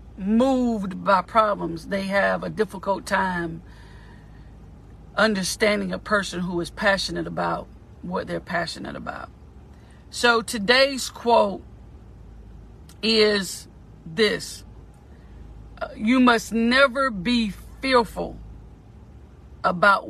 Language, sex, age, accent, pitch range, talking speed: English, female, 50-69, American, 195-250 Hz, 90 wpm